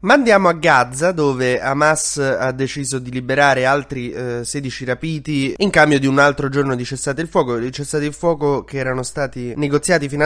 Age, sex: 20-39, male